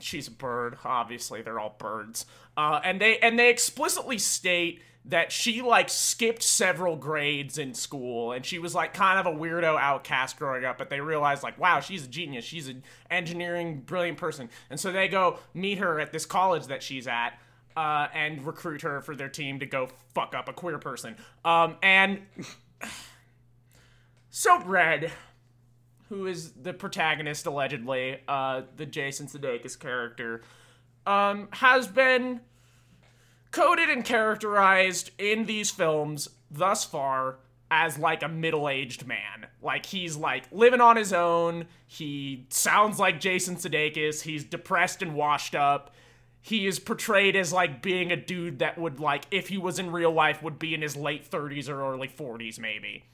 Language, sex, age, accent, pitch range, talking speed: English, male, 20-39, American, 130-185 Hz, 165 wpm